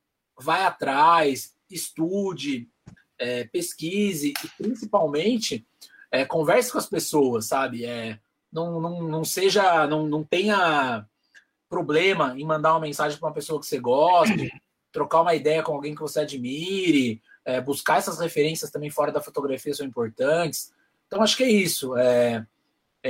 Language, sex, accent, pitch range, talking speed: Portuguese, male, Brazilian, 140-160 Hz, 150 wpm